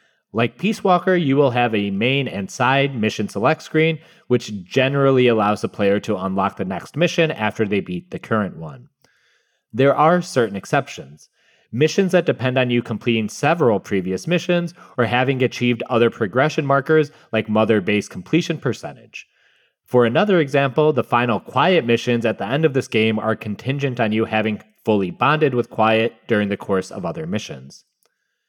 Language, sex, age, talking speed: English, male, 30-49, 170 wpm